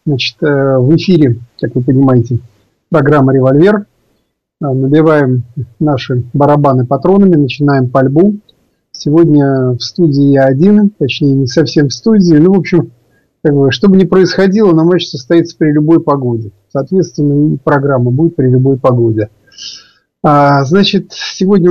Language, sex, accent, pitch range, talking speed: Russian, male, native, 135-170 Hz, 125 wpm